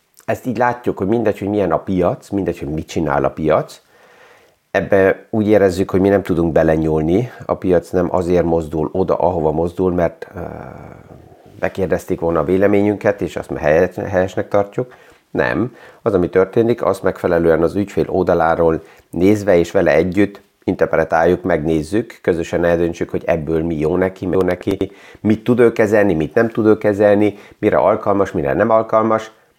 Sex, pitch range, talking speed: male, 90-110 Hz, 160 wpm